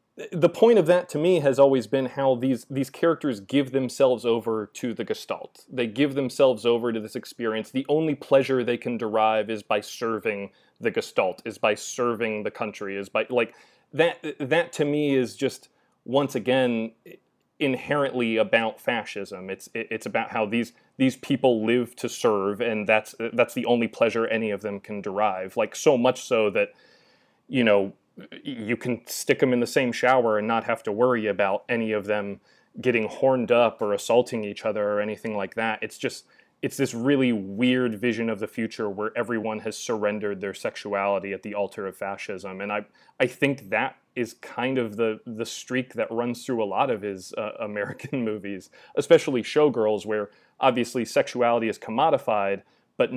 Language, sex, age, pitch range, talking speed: English, male, 30-49, 105-130 Hz, 185 wpm